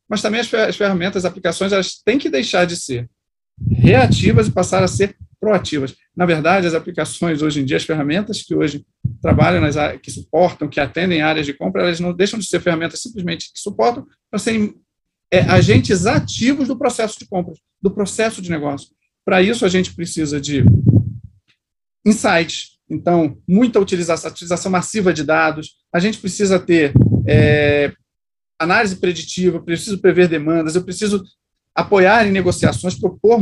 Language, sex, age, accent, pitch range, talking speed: Portuguese, male, 40-59, Brazilian, 155-200 Hz, 165 wpm